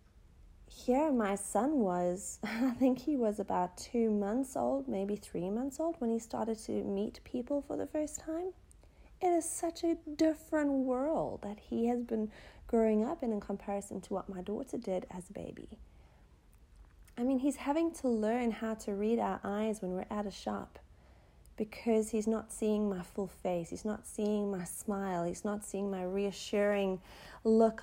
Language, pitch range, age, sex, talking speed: English, 200-255 Hz, 30-49, female, 180 wpm